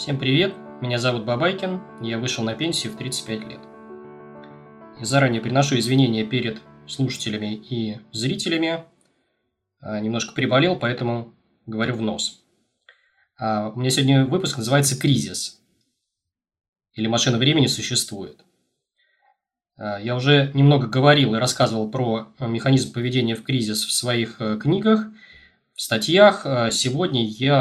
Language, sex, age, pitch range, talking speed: Russian, male, 20-39, 110-140 Hz, 115 wpm